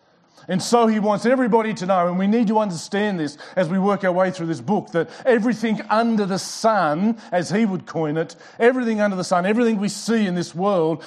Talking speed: 220 wpm